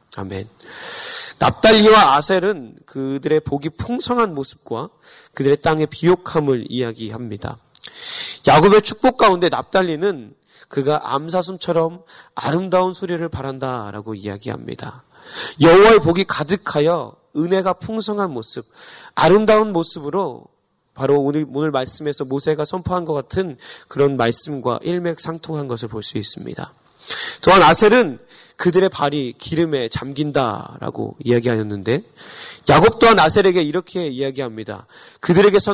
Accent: native